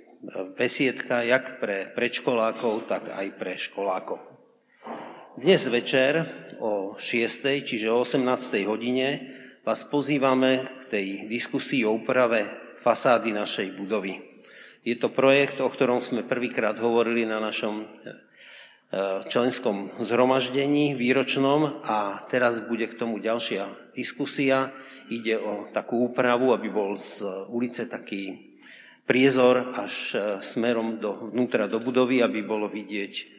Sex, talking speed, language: male, 115 wpm, Slovak